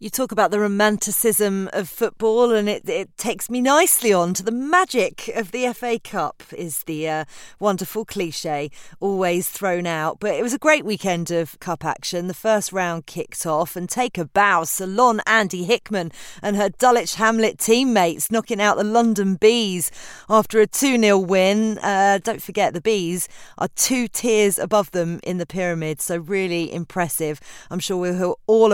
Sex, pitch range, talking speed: female, 175-215 Hz, 175 wpm